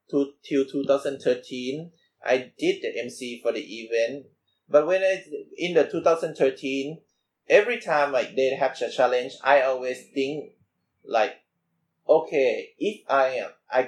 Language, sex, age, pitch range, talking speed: English, male, 20-39, 120-160 Hz, 140 wpm